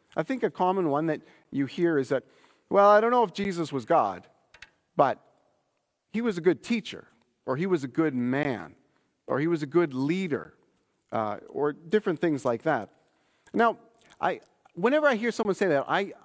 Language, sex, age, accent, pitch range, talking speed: English, male, 40-59, American, 160-220 Hz, 190 wpm